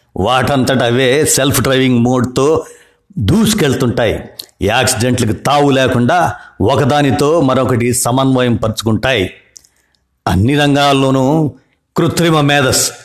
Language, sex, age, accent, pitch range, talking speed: Telugu, male, 50-69, native, 115-140 Hz, 80 wpm